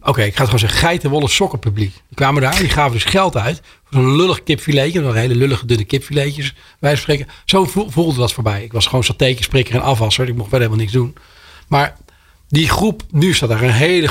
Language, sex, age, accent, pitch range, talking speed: Dutch, male, 40-59, Dutch, 120-155 Hz, 220 wpm